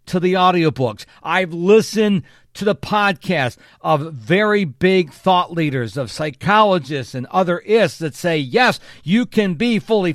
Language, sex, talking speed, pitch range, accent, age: English, male, 150 wpm, 140-190 Hz, American, 50-69